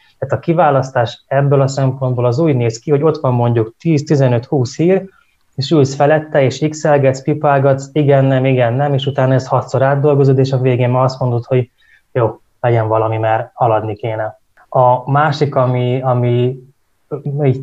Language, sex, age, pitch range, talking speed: Hungarian, male, 20-39, 120-135 Hz, 160 wpm